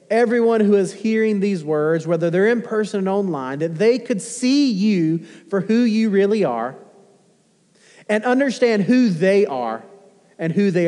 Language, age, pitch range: English, 40-59, 150-200 Hz